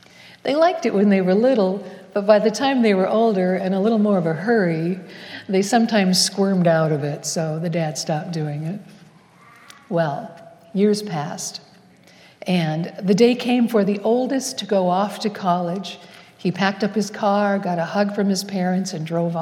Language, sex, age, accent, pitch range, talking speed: English, female, 60-79, American, 175-210 Hz, 190 wpm